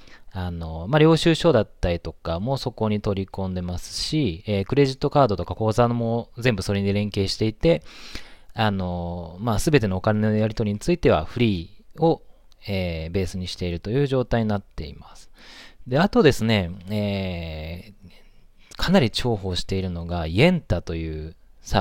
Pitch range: 90-125 Hz